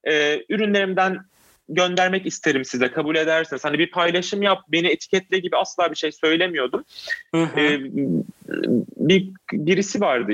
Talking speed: 130 wpm